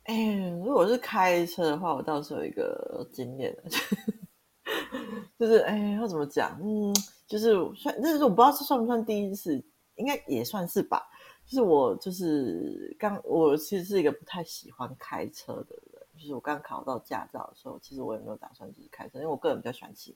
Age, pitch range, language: 30-49, 135-210 Hz, Chinese